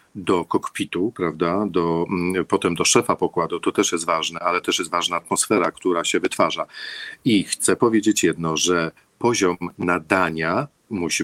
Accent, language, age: native, Polish, 50-69